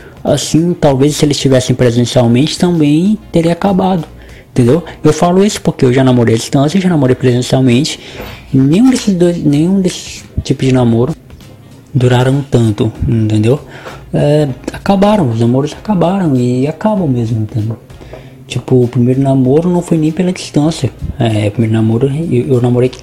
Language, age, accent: Portuguese, 20-39, Brazilian